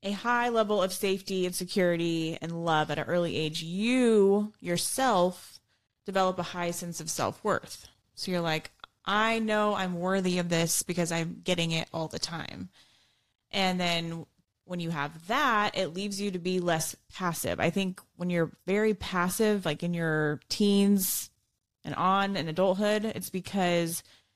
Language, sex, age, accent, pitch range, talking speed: English, female, 20-39, American, 160-200 Hz, 165 wpm